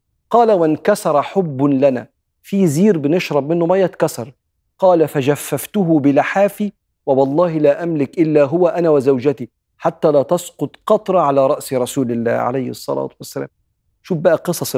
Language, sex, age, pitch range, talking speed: Arabic, male, 40-59, 130-165 Hz, 140 wpm